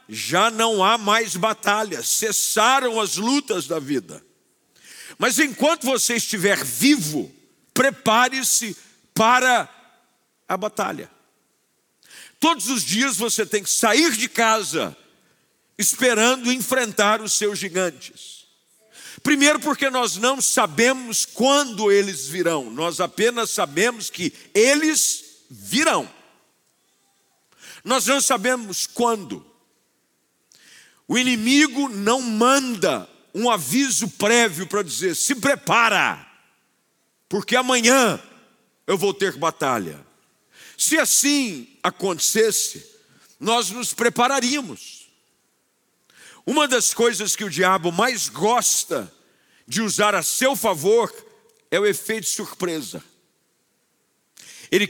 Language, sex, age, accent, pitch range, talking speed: Portuguese, male, 50-69, Brazilian, 205-260 Hz, 100 wpm